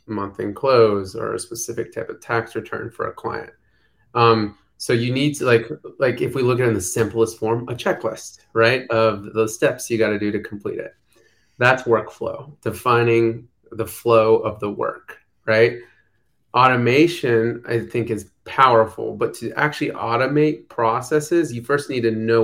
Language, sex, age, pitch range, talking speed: English, male, 30-49, 110-120 Hz, 175 wpm